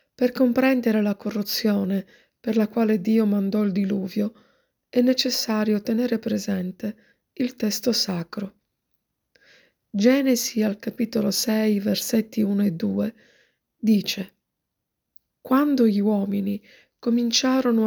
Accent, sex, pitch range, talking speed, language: native, female, 205-240 Hz, 105 wpm, Italian